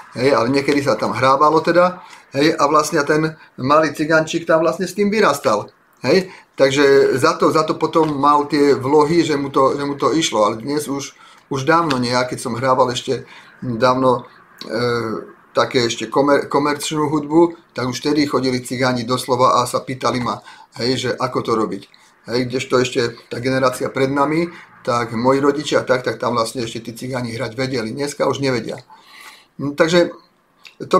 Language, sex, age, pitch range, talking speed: Slovak, male, 40-59, 125-160 Hz, 180 wpm